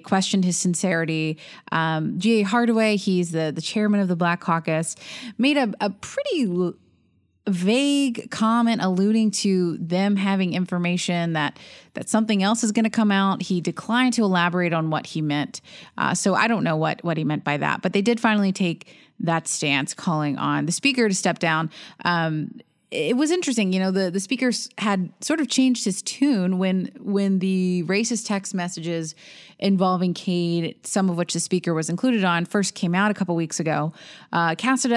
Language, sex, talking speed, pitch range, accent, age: English, female, 185 wpm, 165-215 Hz, American, 20-39